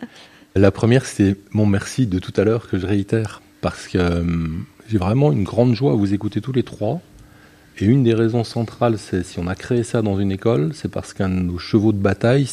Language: French